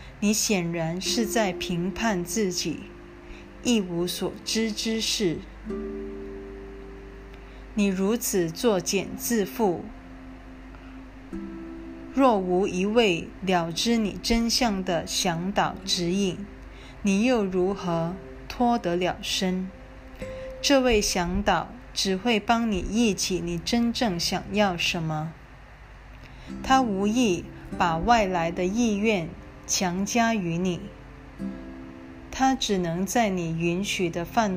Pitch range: 155-220 Hz